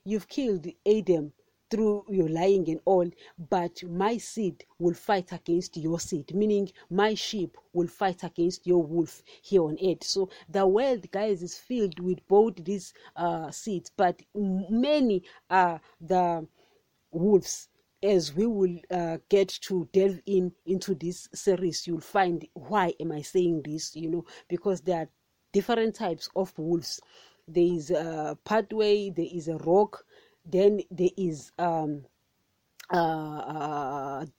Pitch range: 170-200 Hz